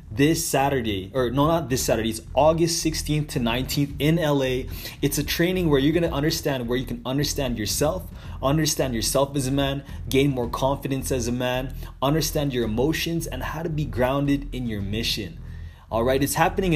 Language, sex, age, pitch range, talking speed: English, male, 20-39, 115-155 Hz, 190 wpm